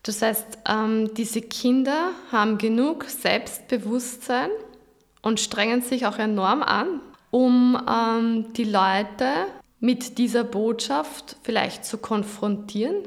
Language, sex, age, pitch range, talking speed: German, female, 20-39, 210-245 Hz, 100 wpm